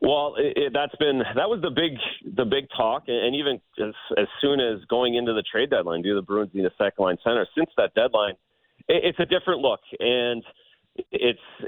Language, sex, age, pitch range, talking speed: English, male, 30-49, 105-135 Hz, 215 wpm